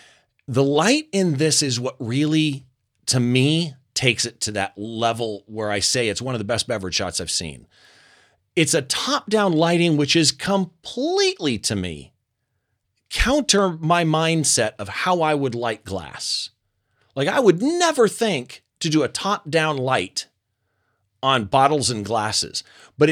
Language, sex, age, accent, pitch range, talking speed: English, male, 40-59, American, 110-170 Hz, 155 wpm